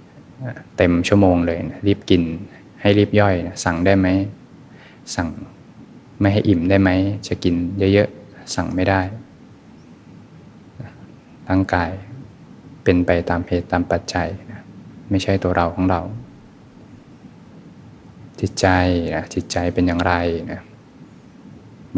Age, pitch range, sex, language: 20-39, 90-100 Hz, male, Thai